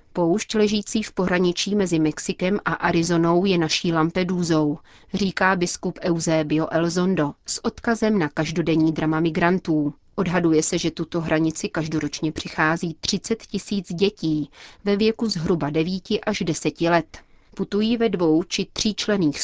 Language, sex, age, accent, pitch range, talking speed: Czech, female, 30-49, native, 160-190 Hz, 135 wpm